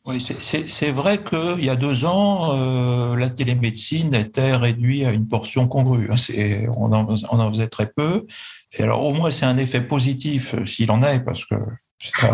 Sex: male